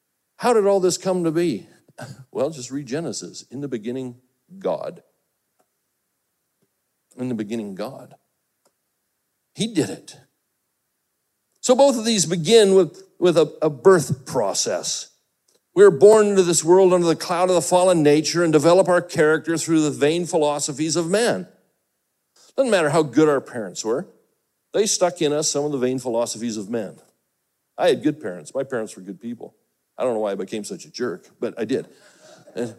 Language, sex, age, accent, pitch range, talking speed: English, male, 60-79, American, 130-190 Hz, 175 wpm